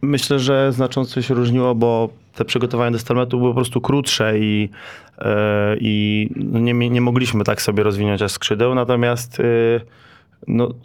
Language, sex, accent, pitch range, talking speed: Polish, male, native, 115-125 Hz, 150 wpm